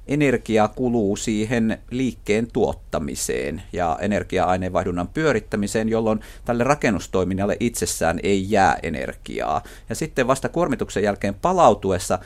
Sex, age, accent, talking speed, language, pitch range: male, 50-69, native, 105 wpm, Finnish, 100-130 Hz